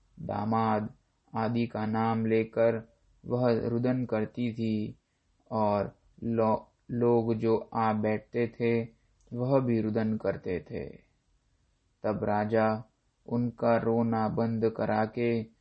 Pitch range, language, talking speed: 110-120 Hz, Hindi, 110 wpm